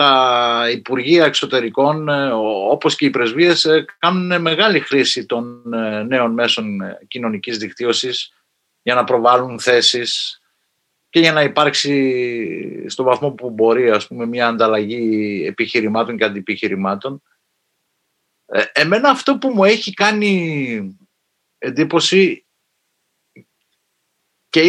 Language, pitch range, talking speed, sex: Greek, 120-195 Hz, 100 wpm, male